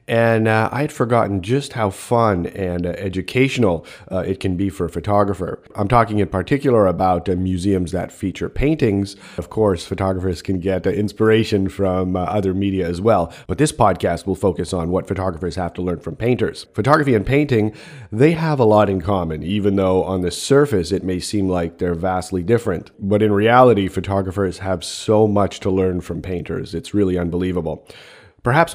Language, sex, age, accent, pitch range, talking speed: English, male, 30-49, American, 95-115 Hz, 185 wpm